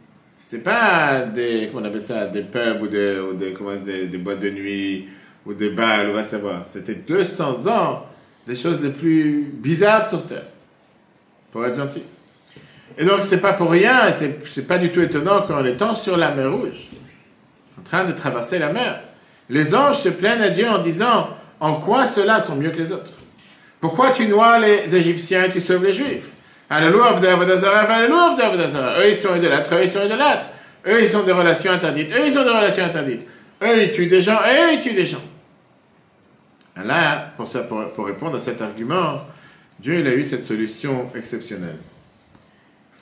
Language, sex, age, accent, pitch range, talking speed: French, male, 50-69, French, 120-195 Hz, 200 wpm